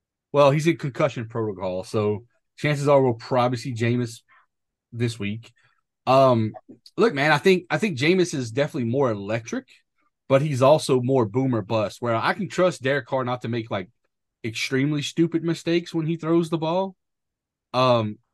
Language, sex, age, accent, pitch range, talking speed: English, male, 30-49, American, 110-140 Hz, 165 wpm